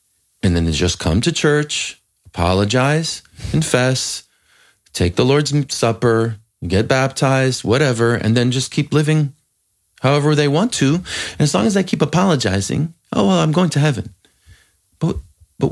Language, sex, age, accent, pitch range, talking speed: Romanian, male, 30-49, American, 95-135 Hz, 155 wpm